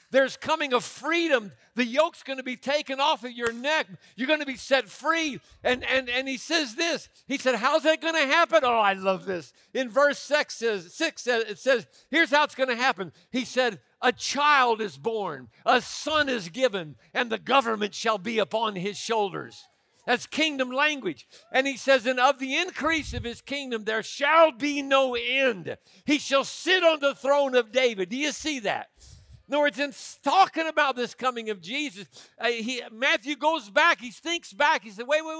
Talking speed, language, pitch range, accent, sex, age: 205 wpm, English, 220-290 Hz, American, male, 60-79